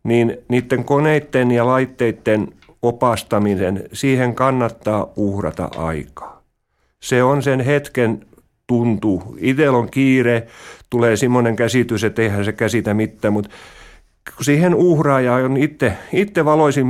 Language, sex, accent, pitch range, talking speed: Finnish, male, native, 105-130 Hz, 120 wpm